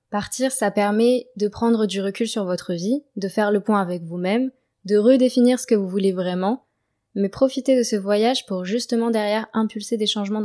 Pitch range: 180-220 Hz